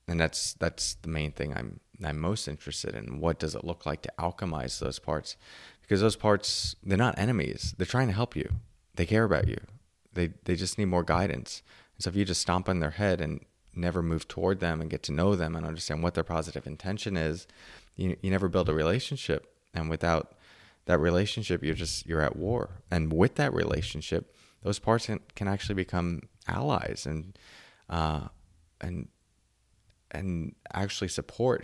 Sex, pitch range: male, 80-100 Hz